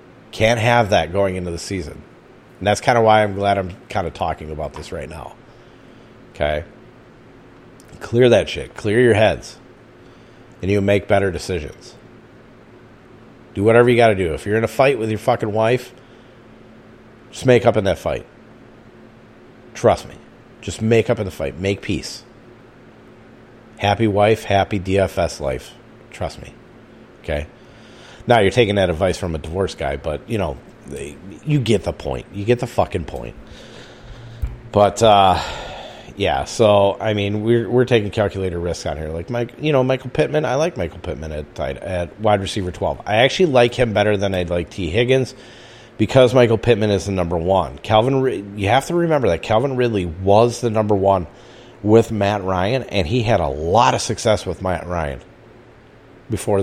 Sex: male